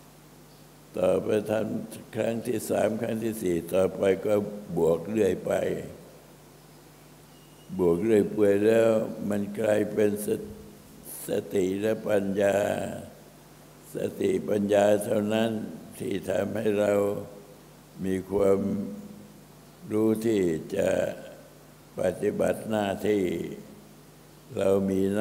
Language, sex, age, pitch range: Thai, male, 60-79, 95-105 Hz